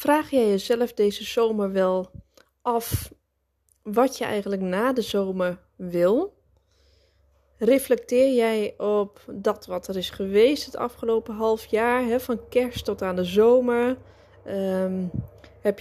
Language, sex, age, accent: Dutch, female, 20-39, Dutch